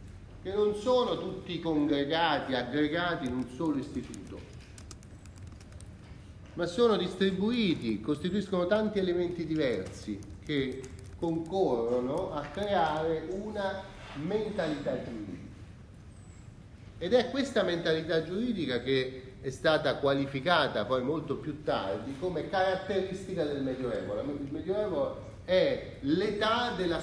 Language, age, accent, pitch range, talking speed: Italian, 30-49, native, 105-165 Hz, 100 wpm